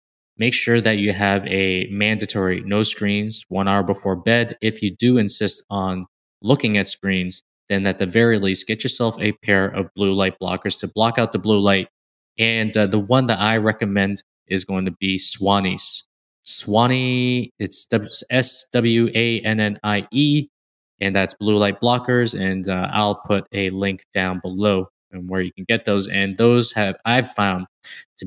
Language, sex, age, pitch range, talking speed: English, male, 20-39, 95-115 Hz, 170 wpm